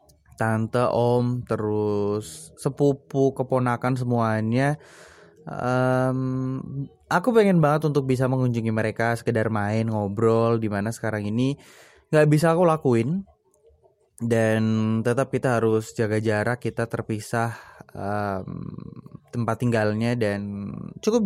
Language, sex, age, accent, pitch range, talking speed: Indonesian, male, 20-39, native, 115-140 Hz, 105 wpm